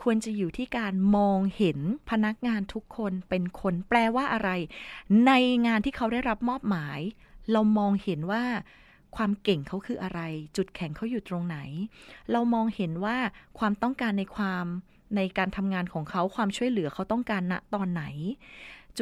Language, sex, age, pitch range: Thai, female, 20-39, 190-245 Hz